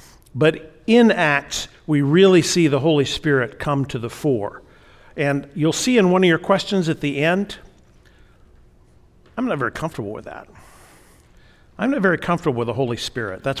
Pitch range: 130-170 Hz